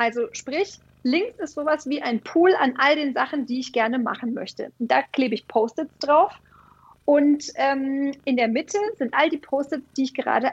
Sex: female